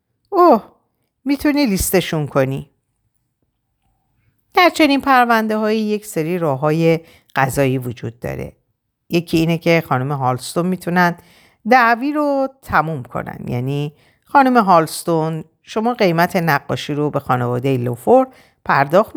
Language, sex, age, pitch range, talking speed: Persian, female, 50-69, 130-220 Hz, 105 wpm